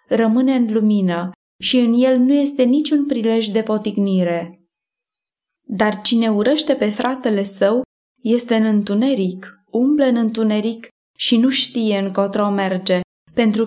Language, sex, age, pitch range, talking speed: Romanian, female, 20-39, 205-255 Hz, 130 wpm